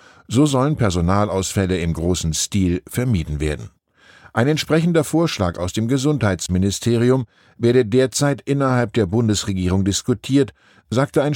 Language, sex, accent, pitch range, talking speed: German, male, German, 90-120 Hz, 115 wpm